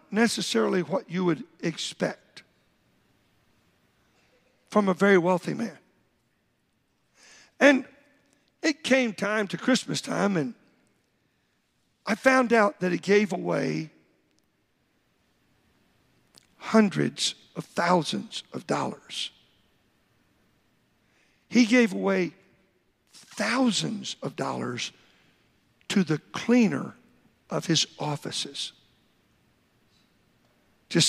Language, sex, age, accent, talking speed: English, male, 60-79, American, 85 wpm